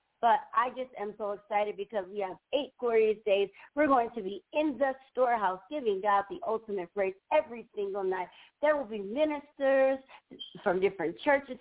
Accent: American